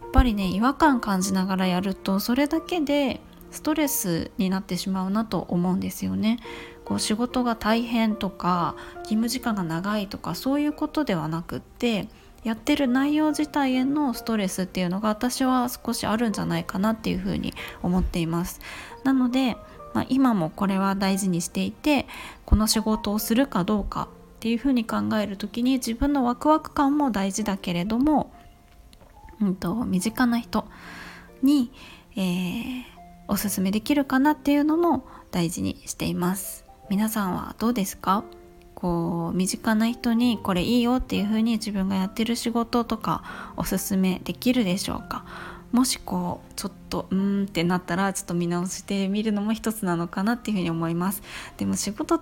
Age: 20-39